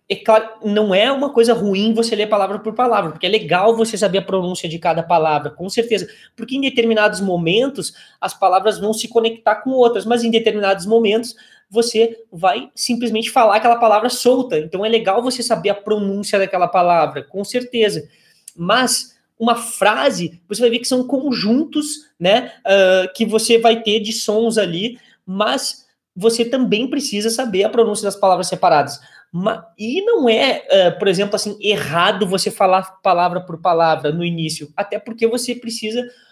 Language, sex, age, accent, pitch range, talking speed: English, male, 20-39, Brazilian, 190-235 Hz, 170 wpm